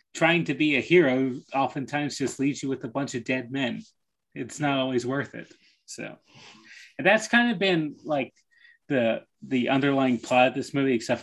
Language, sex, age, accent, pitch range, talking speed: English, male, 30-49, American, 125-150 Hz, 185 wpm